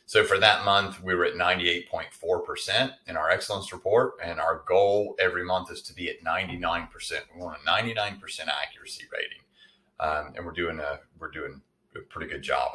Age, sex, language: 30-49, male, English